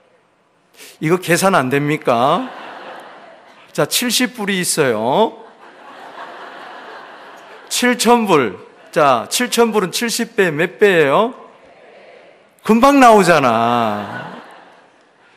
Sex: male